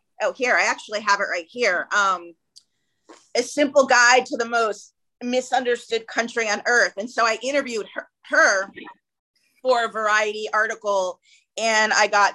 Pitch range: 205-245 Hz